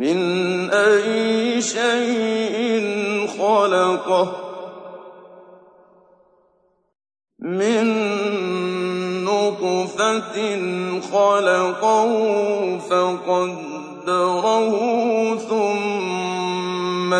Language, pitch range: Arabic, 205-240 Hz